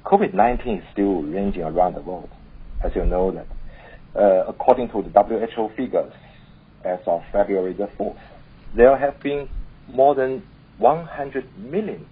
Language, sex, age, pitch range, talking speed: English, male, 60-79, 100-130 Hz, 145 wpm